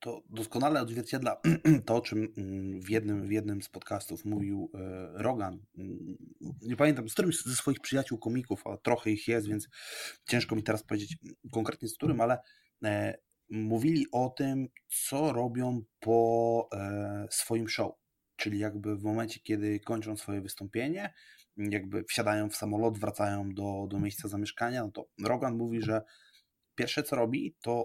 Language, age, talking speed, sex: Polish, 20-39, 150 wpm, male